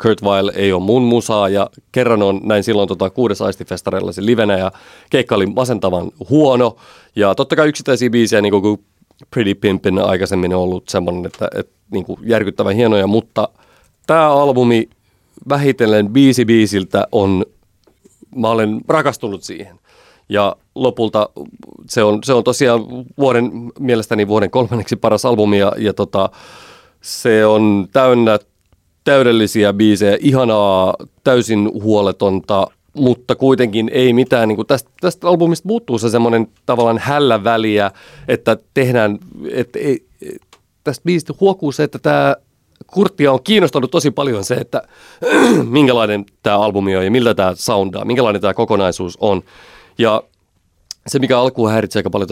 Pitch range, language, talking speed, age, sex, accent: 100-125 Hz, Finnish, 140 wpm, 30-49, male, native